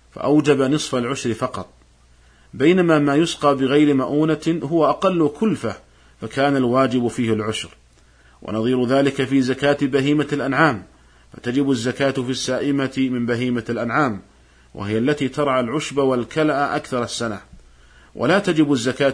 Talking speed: 120 wpm